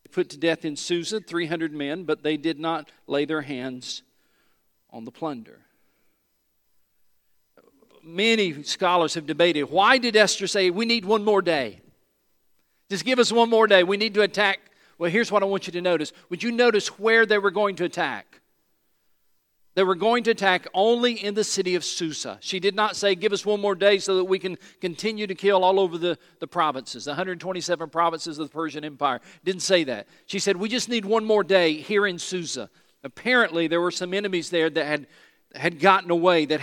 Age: 50-69